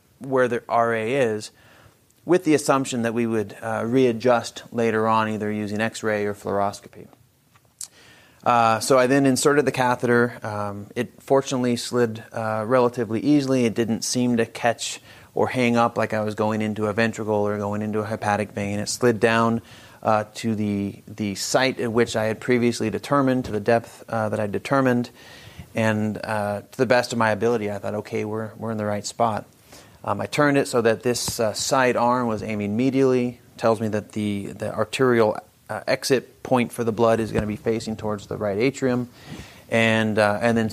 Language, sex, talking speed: English, male, 190 wpm